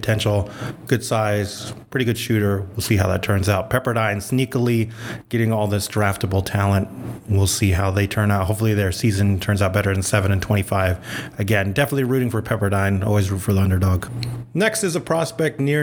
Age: 30-49